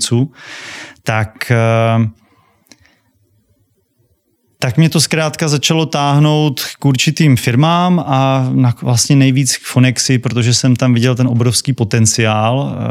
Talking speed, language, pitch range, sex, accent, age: 100 wpm, Czech, 110-125 Hz, male, native, 30-49